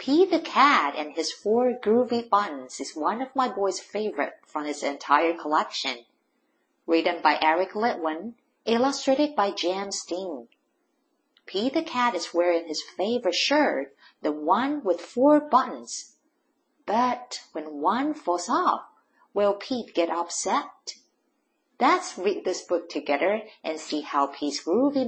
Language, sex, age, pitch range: Chinese, female, 50-69, 170-285 Hz